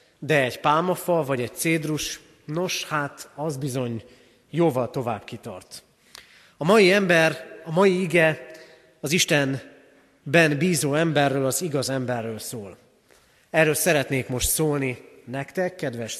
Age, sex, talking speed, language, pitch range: 30-49, male, 120 wpm, Hungarian, 130-165 Hz